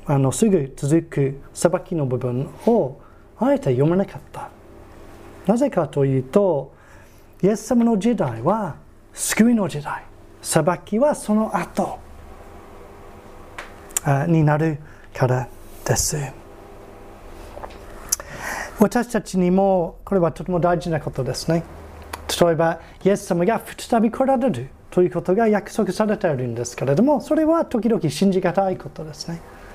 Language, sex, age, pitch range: Japanese, male, 30-49, 120-190 Hz